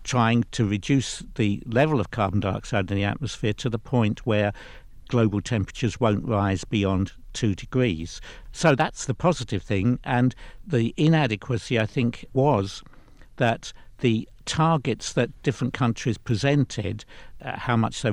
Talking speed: 145 wpm